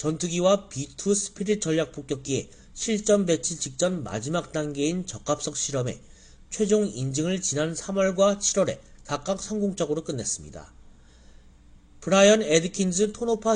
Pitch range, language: 140-200 Hz, Korean